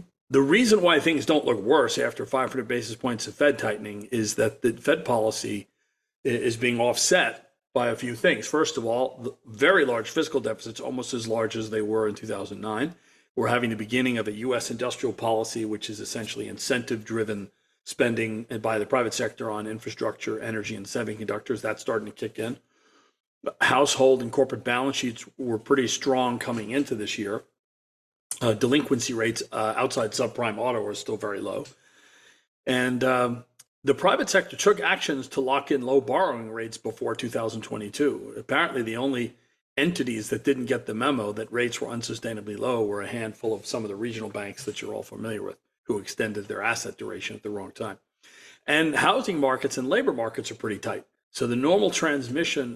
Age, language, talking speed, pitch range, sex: 40-59, English, 180 wpm, 110-130 Hz, male